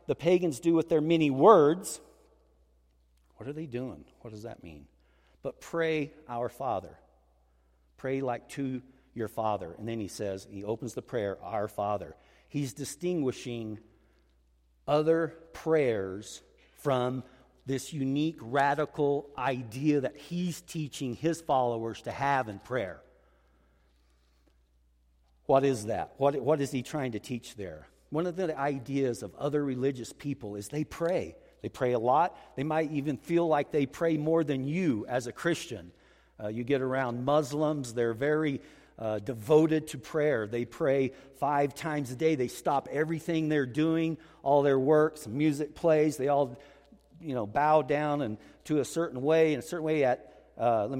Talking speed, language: 160 wpm, English